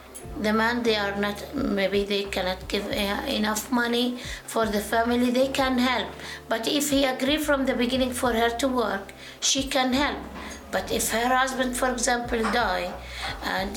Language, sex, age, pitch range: Japanese, female, 60-79, 230-270 Hz